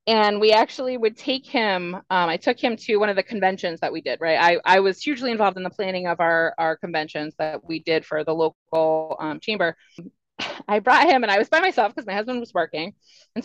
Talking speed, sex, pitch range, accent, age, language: 235 wpm, female, 195-300 Hz, American, 20-39, English